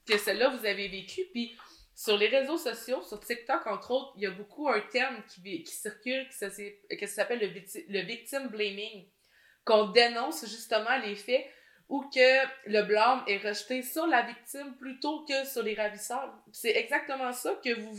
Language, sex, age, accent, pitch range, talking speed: French, female, 20-39, Canadian, 200-255 Hz, 185 wpm